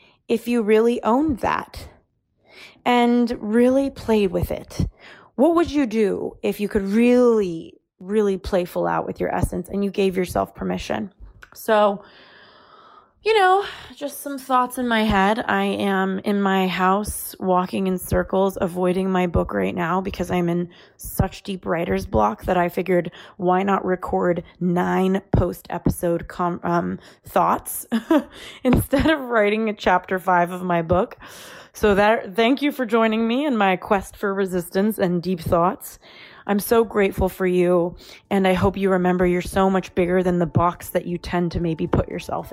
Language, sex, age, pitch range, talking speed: English, female, 20-39, 180-215 Hz, 165 wpm